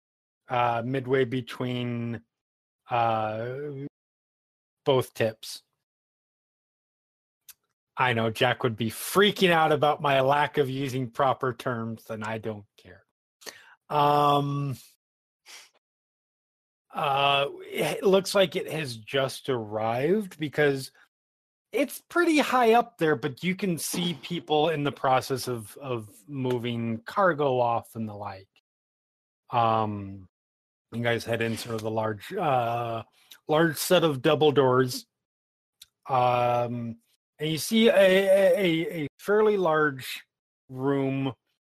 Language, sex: English, male